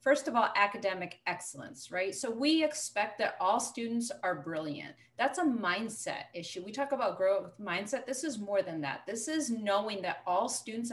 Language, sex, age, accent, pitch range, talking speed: English, female, 30-49, American, 195-255 Hz, 185 wpm